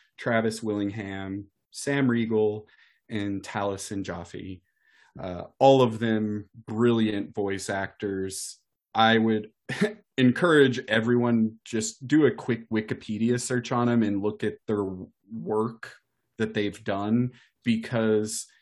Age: 30-49